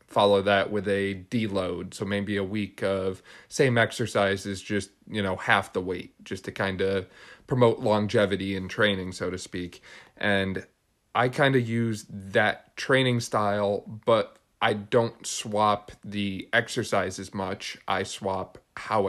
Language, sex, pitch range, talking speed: English, male, 100-110 Hz, 150 wpm